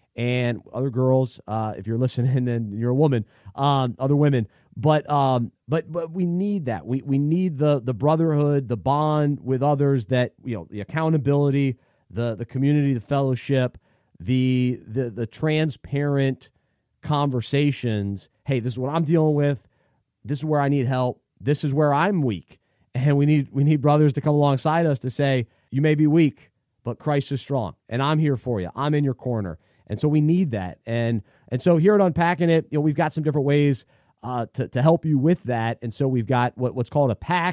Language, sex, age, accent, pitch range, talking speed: English, male, 30-49, American, 125-150 Hz, 205 wpm